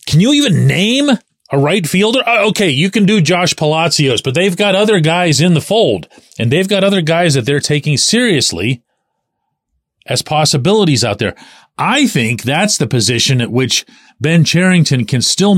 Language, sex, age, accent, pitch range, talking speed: English, male, 40-59, American, 110-175 Hz, 175 wpm